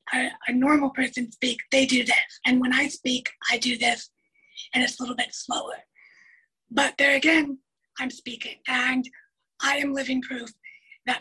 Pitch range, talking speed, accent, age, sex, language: 245-275 Hz, 170 wpm, American, 30-49, female, English